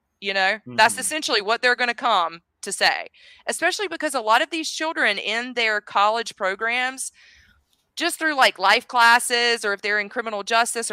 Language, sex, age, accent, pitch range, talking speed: English, female, 20-39, American, 175-235 Hz, 180 wpm